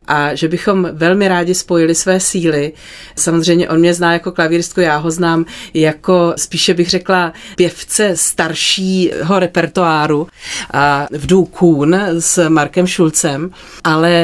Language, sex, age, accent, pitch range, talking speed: Czech, female, 30-49, native, 160-185 Hz, 130 wpm